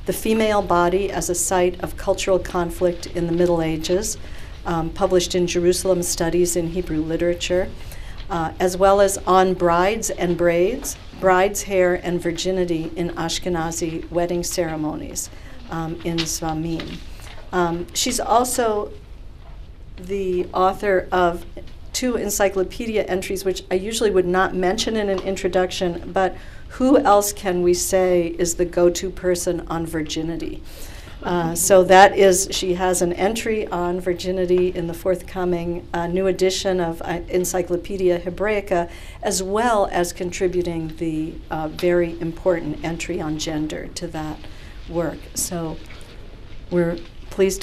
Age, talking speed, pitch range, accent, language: 50-69, 135 wpm, 165-190 Hz, American, English